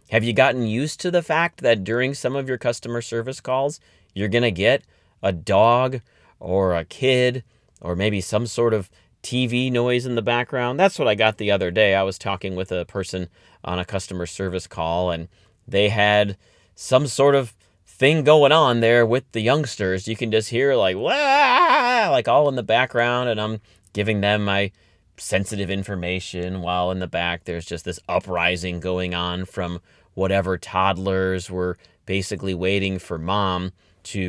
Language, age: English, 30-49